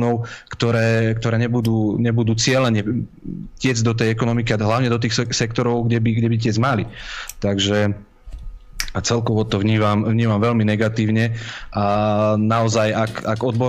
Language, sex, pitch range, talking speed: Slovak, male, 110-120 Hz, 135 wpm